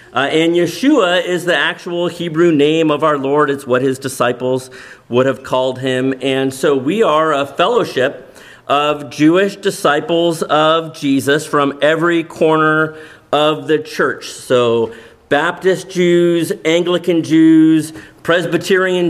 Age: 40-59